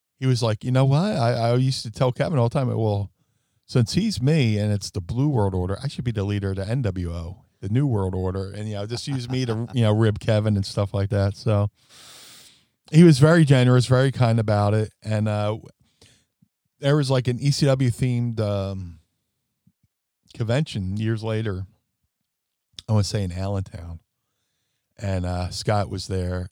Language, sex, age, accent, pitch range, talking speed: English, male, 40-59, American, 100-125 Hz, 190 wpm